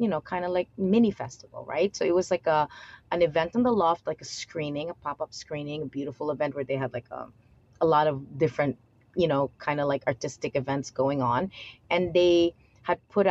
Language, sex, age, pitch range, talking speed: Filipino, female, 30-49, 135-175 Hz, 220 wpm